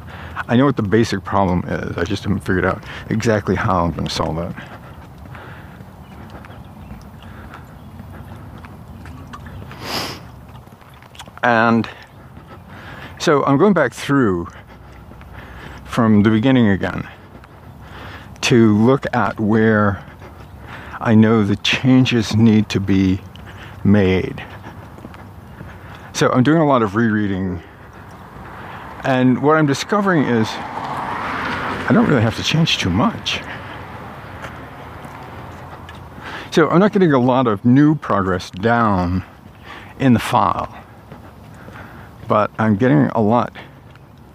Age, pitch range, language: 60-79, 100-125 Hz, English